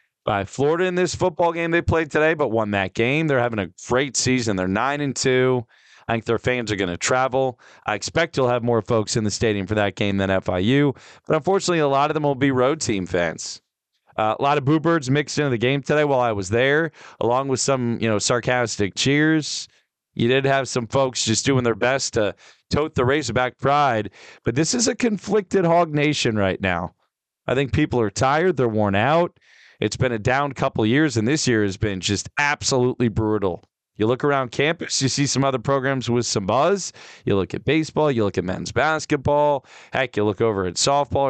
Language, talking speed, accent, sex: English, 220 wpm, American, male